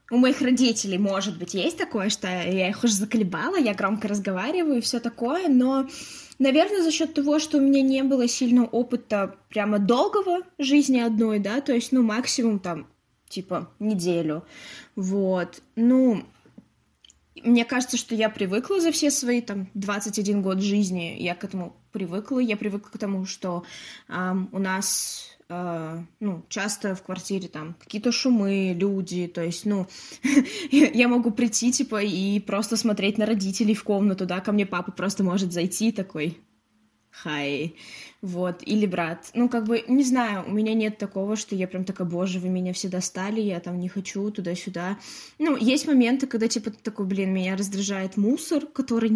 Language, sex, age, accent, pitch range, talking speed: Russian, female, 20-39, native, 190-245 Hz, 170 wpm